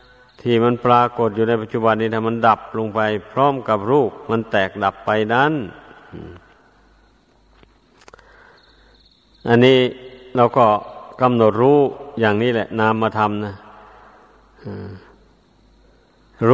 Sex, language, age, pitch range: male, Thai, 60-79, 110-125 Hz